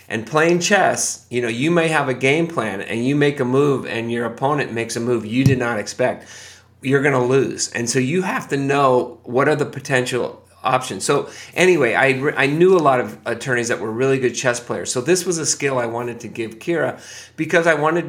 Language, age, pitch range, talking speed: English, 30-49, 115-140 Hz, 230 wpm